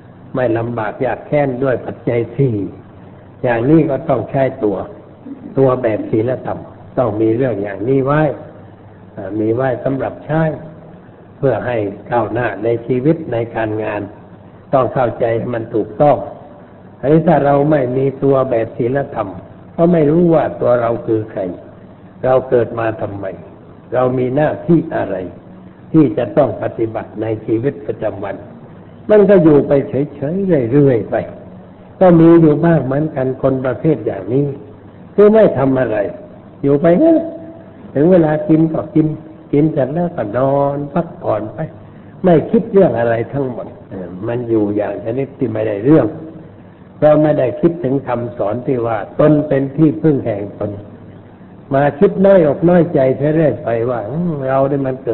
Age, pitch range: 60-79, 115-155 Hz